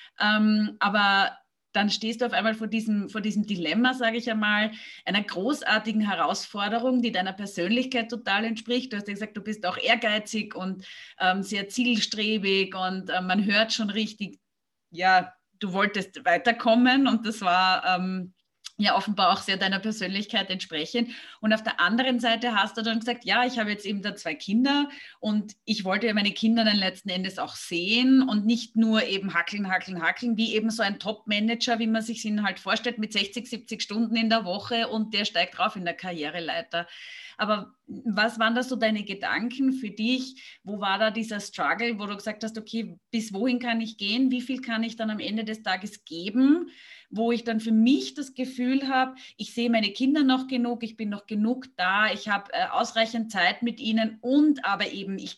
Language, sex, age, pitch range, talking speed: German, female, 30-49, 200-235 Hz, 195 wpm